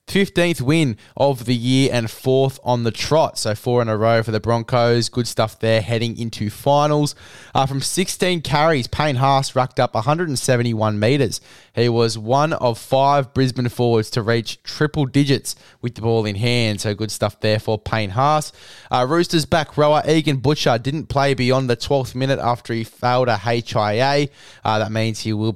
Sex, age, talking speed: male, 20-39, 185 wpm